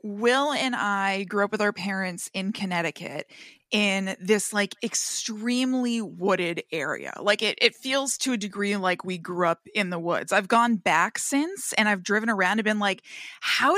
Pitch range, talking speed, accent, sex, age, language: 190-240 Hz, 185 wpm, American, female, 20-39, English